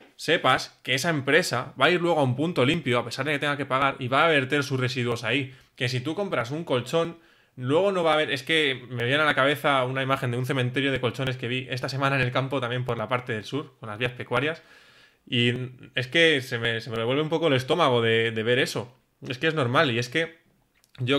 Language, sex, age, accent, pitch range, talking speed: Spanish, male, 20-39, Spanish, 120-140 Hz, 260 wpm